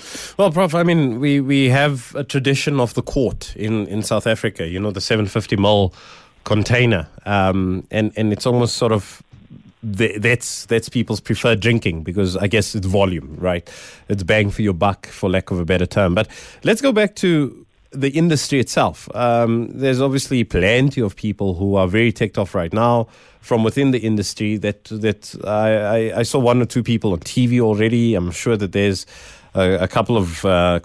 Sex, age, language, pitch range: male, 30-49, English, 100-120 Hz